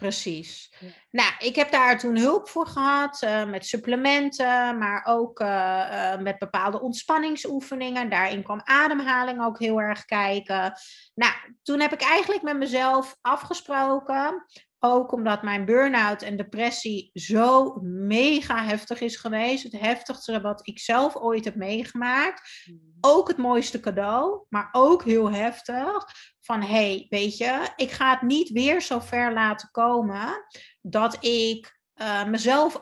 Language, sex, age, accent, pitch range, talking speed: Dutch, female, 30-49, Dutch, 215-275 Hz, 145 wpm